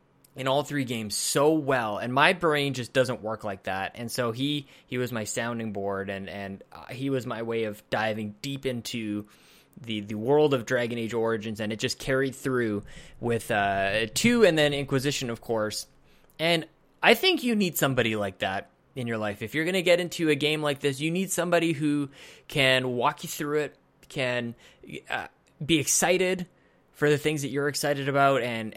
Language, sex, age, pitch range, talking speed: English, male, 20-39, 115-150 Hz, 200 wpm